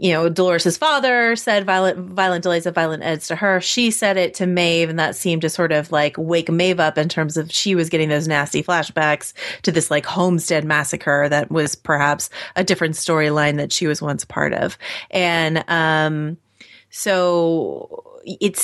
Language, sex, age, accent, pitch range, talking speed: English, female, 30-49, American, 165-230 Hz, 185 wpm